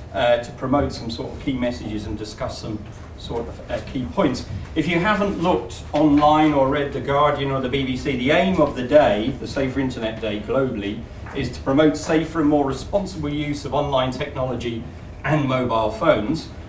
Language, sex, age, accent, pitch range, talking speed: English, male, 40-59, British, 120-155 Hz, 185 wpm